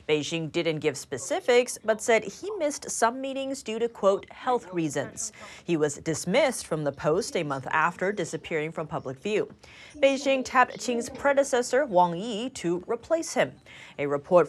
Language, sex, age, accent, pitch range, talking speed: English, female, 30-49, American, 160-245 Hz, 160 wpm